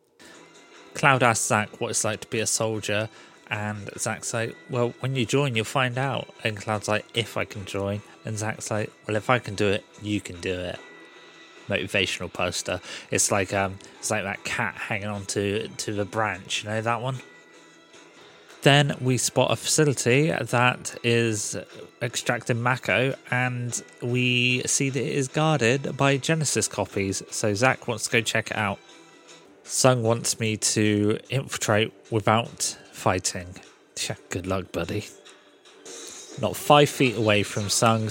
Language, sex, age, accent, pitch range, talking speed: English, male, 30-49, British, 105-130 Hz, 160 wpm